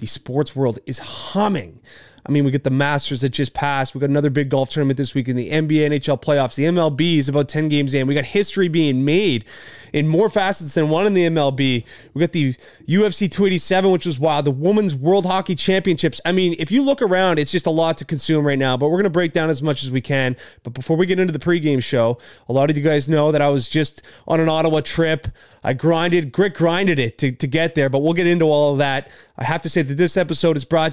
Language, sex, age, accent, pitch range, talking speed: English, male, 20-39, American, 145-175 Hz, 255 wpm